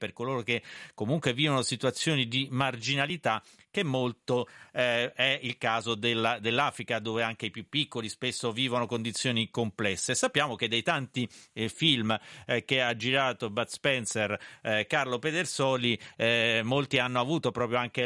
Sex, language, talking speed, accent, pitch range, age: male, Italian, 150 wpm, native, 115-135 Hz, 40-59